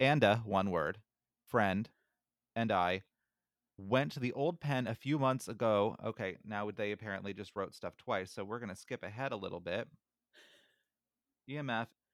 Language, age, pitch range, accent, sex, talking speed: English, 30-49, 100-125 Hz, American, male, 165 wpm